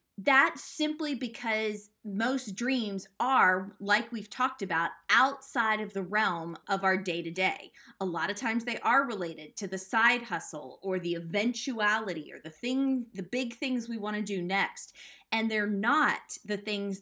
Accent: American